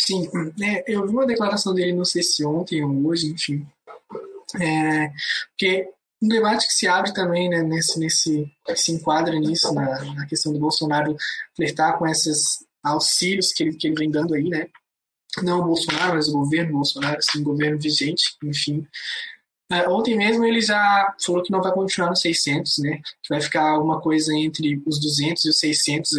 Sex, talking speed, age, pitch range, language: male, 185 wpm, 20-39, 155-195 Hz, Portuguese